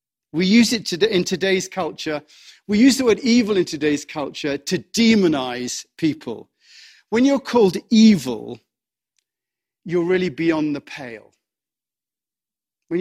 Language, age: English, 40-59